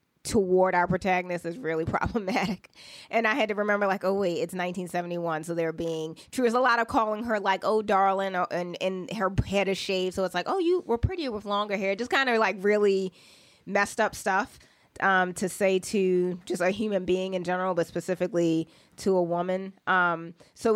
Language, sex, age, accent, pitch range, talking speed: English, female, 20-39, American, 170-195 Hz, 210 wpm